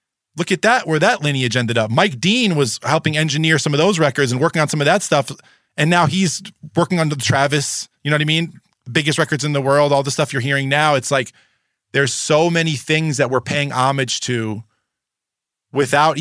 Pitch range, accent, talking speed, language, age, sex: 120-155 Hz, American, 220 wpm, English, 20-39, male